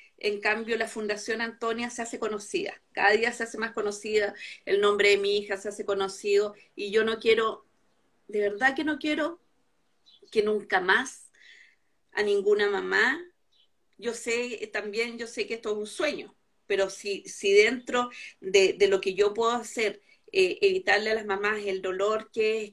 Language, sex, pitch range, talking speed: Spanish, female, 205-275 Hz, 175 wpm